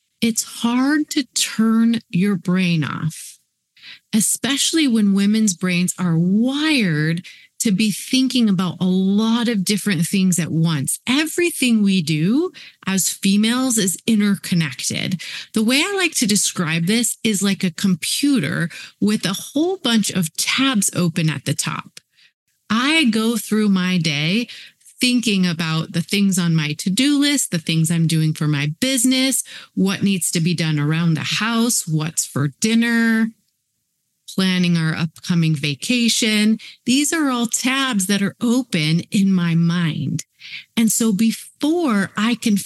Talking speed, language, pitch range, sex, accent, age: 145 wpm, English, 170-230 Hz, female, American, 30-49